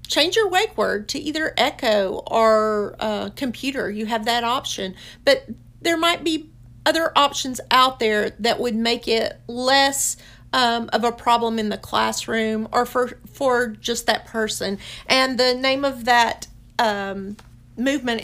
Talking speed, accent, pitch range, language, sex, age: 155 wpm, American, 210-265 Hz, English, female, 50-69